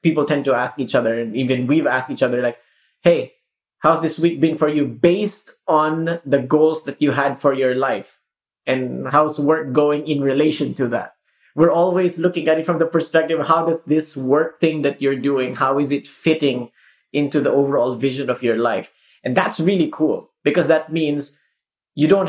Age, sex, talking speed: 30-49, male, 200 wpm